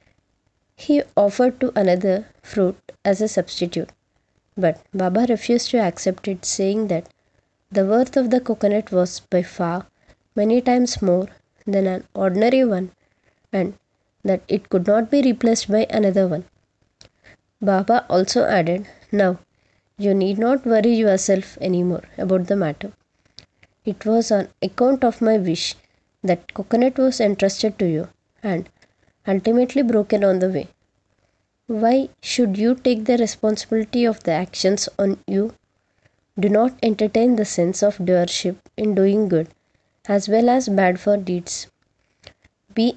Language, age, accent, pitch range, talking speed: Hindi, 20-39, native, 175-220 Hz, 140 wpm